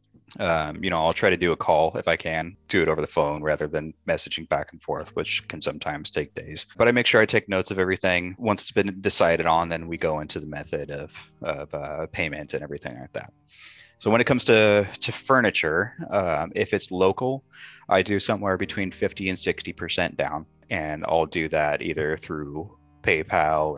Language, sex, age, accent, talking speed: English, male, 30-49, American, 210 wpm